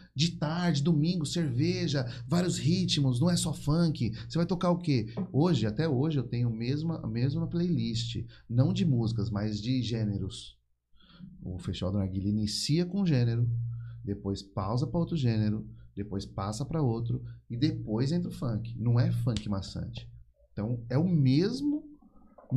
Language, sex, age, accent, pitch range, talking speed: Portuguese, male, 30-49, Brazilian, 110-160 Hz, 155 wpm